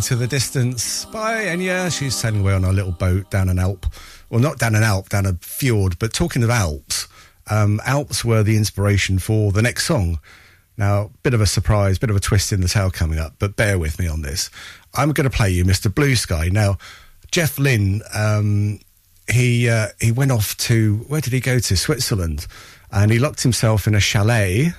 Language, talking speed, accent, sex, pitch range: English, 210 wpm, British, male, 95-125 Hz